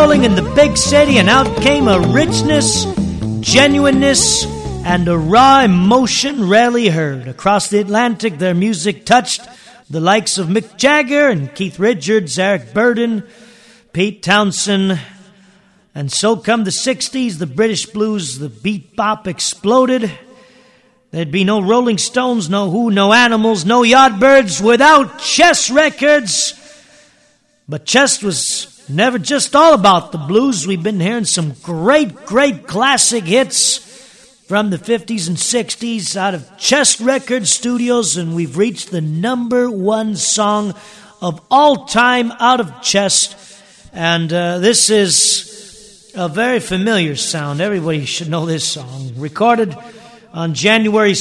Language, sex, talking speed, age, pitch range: English, male, 140 wpm, 40-59, 190-255 Hz